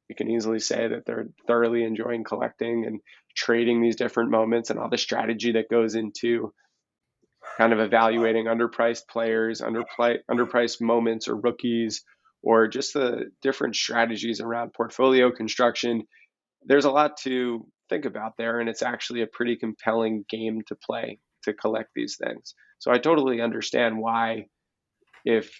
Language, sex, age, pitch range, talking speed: English, male, 20-39, 115-120 Hz, 150 wpm